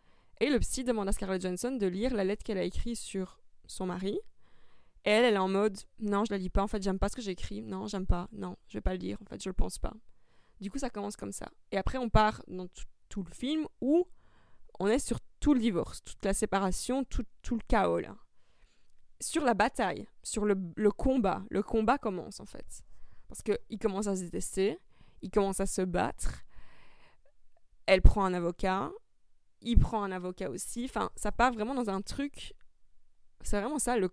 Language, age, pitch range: French, 20-39, 190-230 Hz